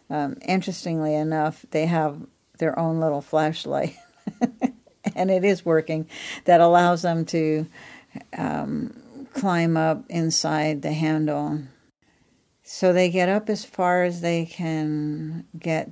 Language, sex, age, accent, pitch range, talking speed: English, female, 50-69, American, 150-175 Hz, 125 wpm